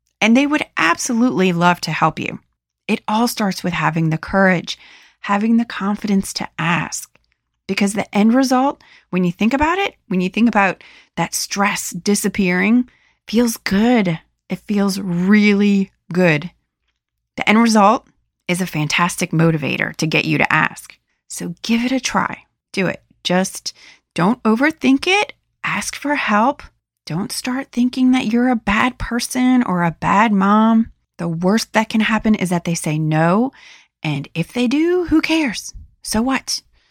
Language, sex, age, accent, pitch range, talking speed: English, female, 30-49, American, 175-230 Hz, 160 wpm